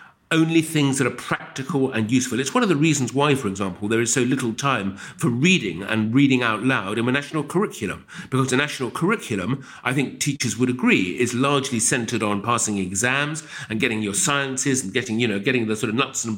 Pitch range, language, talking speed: 120-160 Hz, English, 215 wpm